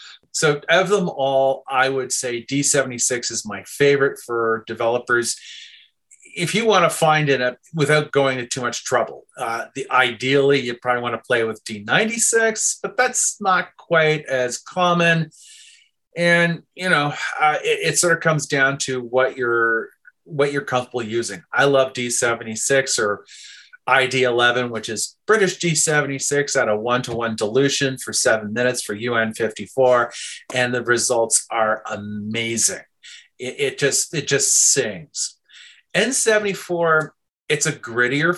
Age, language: 30-49, English